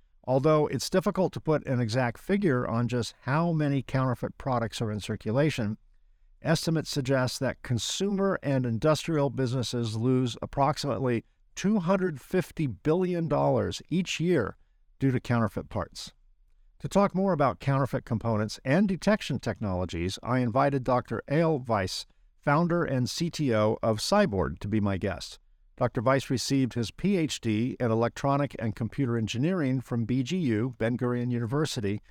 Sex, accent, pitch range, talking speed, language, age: male, American, 115-150 Hz, 135 wpm, English, 50-69